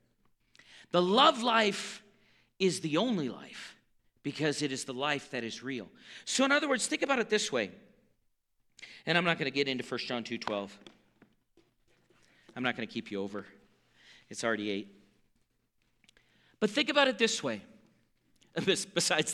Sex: male